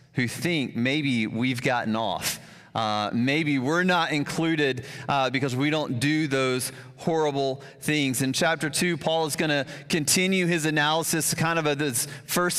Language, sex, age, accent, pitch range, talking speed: English, male, 30-49, American, 135-160 Hz, 160 wpm